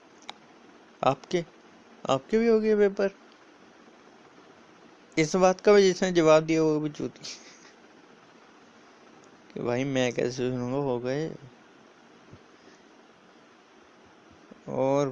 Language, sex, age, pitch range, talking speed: Hindi, male, 20-39, 125-155 Hz, 85 wpm